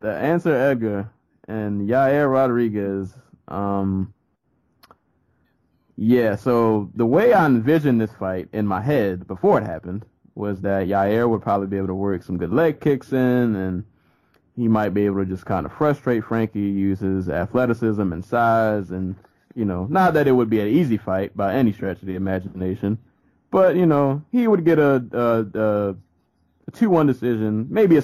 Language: English